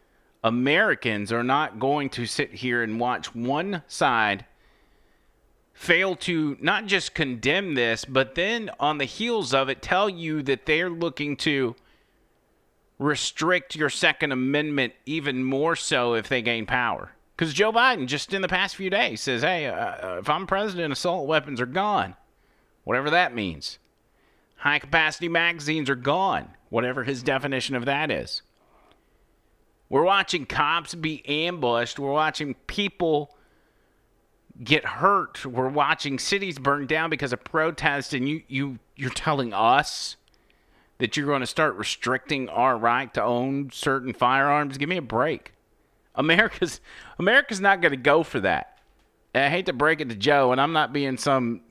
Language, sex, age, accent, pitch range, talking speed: English, male, 30-49, American, 125-160 Hz, 155 wpm